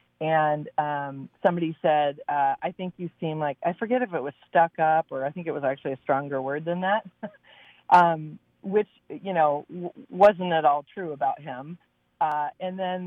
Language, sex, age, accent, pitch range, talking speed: English, female, 30-49, American, 145-180 Hz, 195 wpm